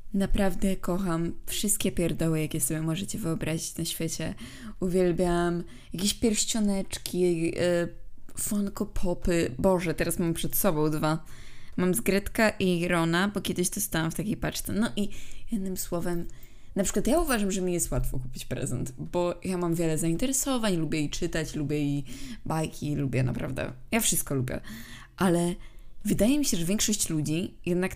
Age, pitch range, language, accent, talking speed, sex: 20-39, 155-185 Hz, Polish, native, 150 wpm, female